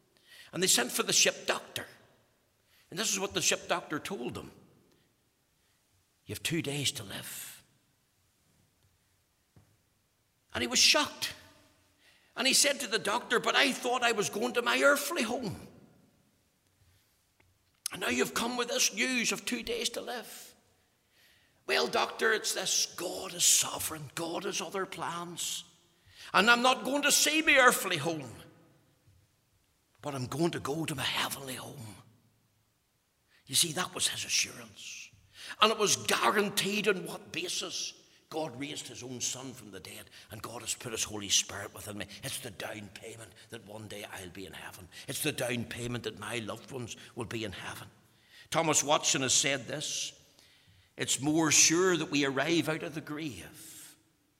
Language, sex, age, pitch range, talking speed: English, male, 60-79, 105-170 Hz, 165 wpm